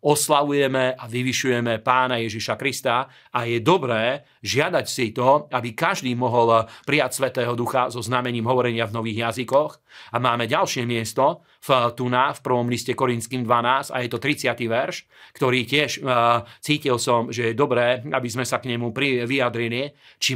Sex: male